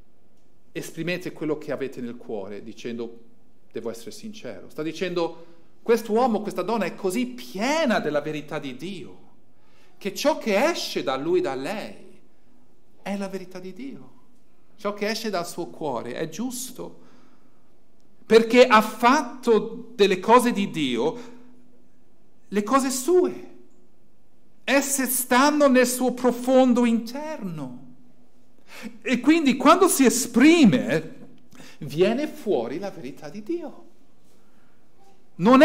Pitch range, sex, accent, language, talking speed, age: 170-250 Hz, male, native, Italian, 120 wpm, 50-69